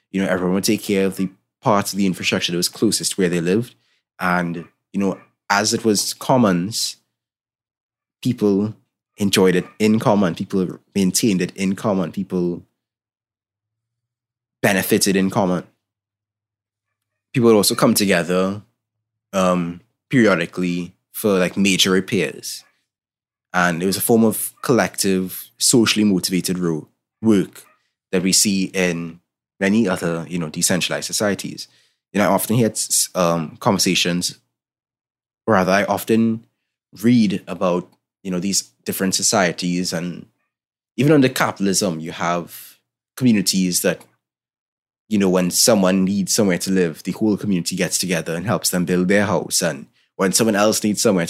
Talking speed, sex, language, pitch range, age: 145 wpm, male, English, 90-110 Hz, 20-39